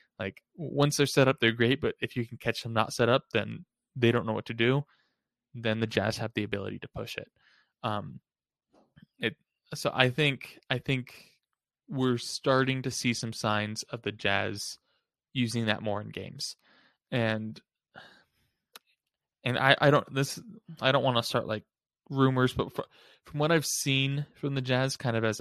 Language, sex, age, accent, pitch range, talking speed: English, male, 20-39, American, 110-130 Hz, 185 wpm